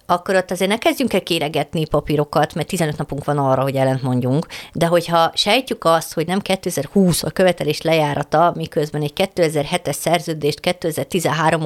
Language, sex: Hungarian, female